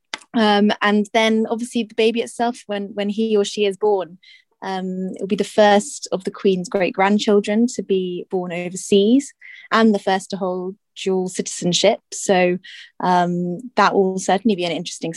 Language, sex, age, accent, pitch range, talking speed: English, female, 20-39, British, 175-215 Hz, 170 wpm